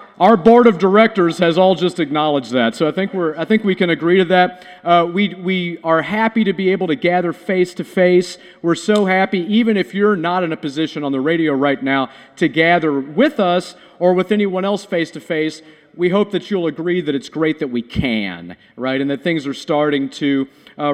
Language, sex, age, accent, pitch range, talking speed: English, male, 40-59, American, 160-220 Hz, 210 wpm